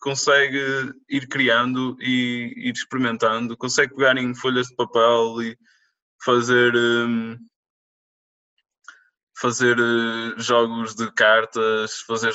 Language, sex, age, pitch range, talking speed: Portuguese, male, 20-39, 120-145 Hz, 90 wpm